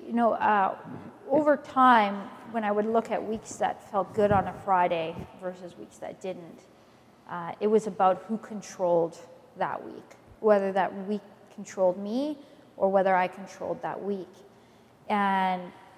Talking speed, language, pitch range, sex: 155 wpm, English, 195-235 Hz, female